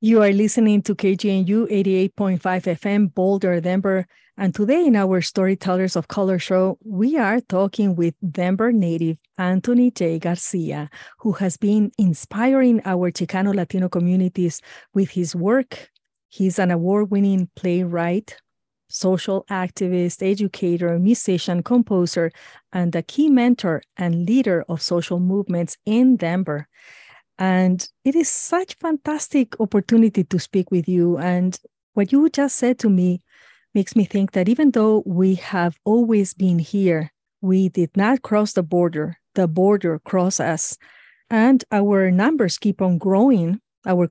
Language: English